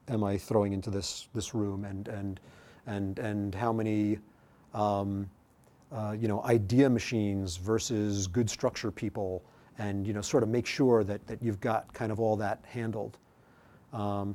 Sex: male